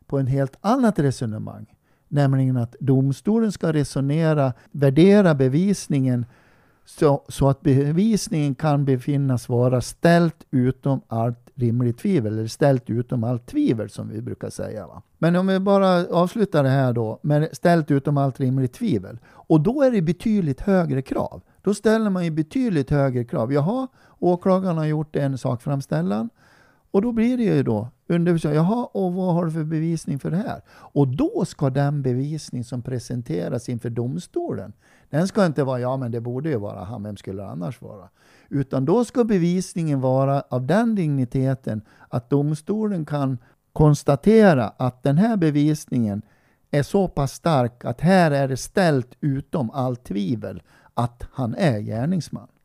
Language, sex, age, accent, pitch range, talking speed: Swedish, male, 60-79, native, 125-170 Hz, 165 wpm